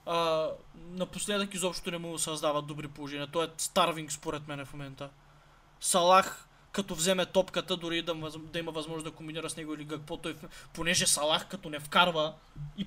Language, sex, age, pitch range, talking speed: Bulgarian, male, 20-39, 150-170 Hz, 190 wpm